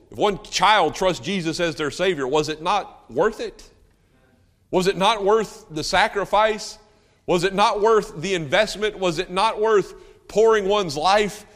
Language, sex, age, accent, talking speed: English, male, 50-69, American, 165 wpm